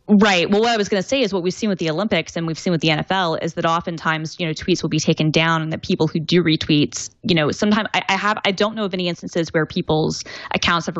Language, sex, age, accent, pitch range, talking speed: English, female, 10-29, American, 160-190 Hz, 285 wpm